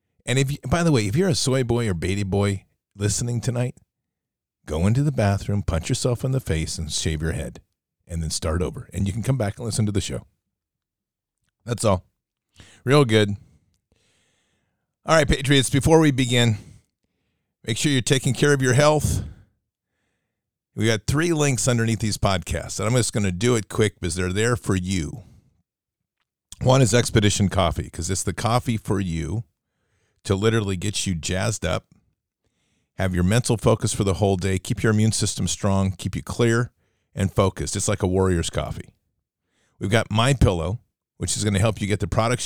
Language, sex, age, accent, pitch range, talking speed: English, male, 50-69, American, 95-120 Hz, 190 wpm